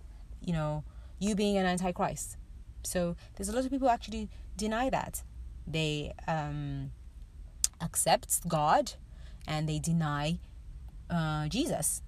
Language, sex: English, female